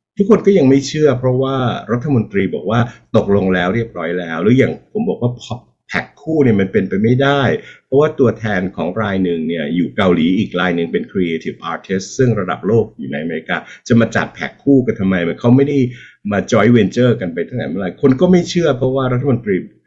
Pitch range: 90-125 Hz